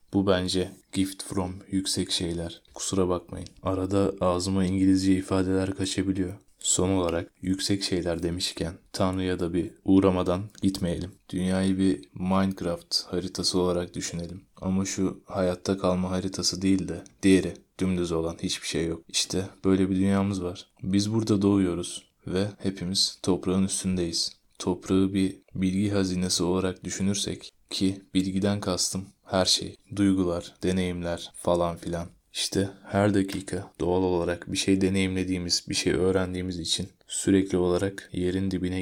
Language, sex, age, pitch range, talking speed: Turkish, male, 20-39, 90-95 Hz, 130 wpm